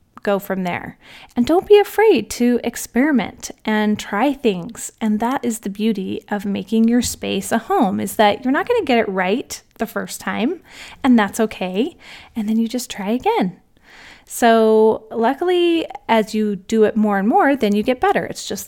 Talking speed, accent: 190 wpm, American